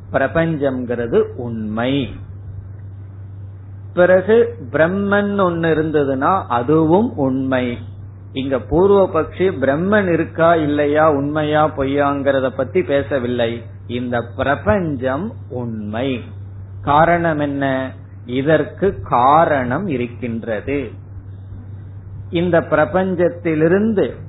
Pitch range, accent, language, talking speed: 110-155 Hz, native, Tamil, 70 wpm